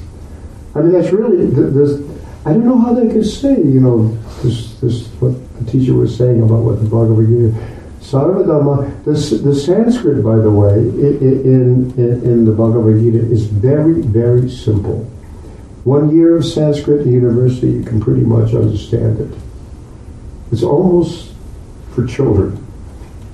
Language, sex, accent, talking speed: English, male, American, 150 wpm